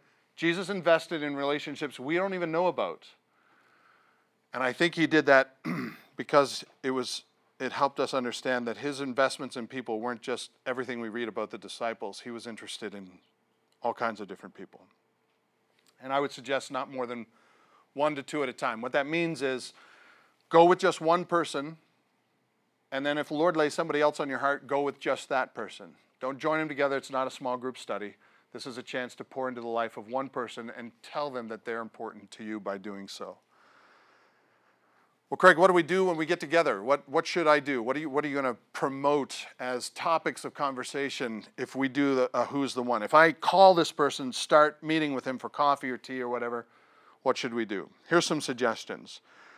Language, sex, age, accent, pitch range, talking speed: English, male, 40-59, American, 125-155 Hz, 205 wpm